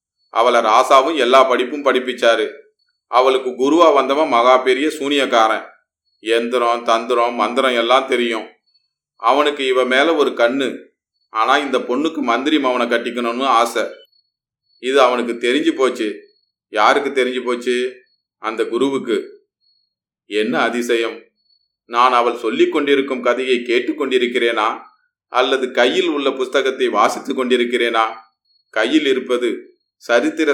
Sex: male